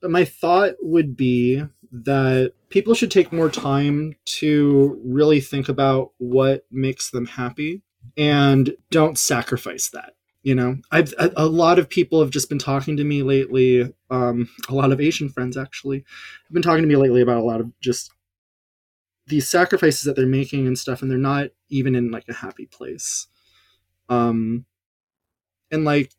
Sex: male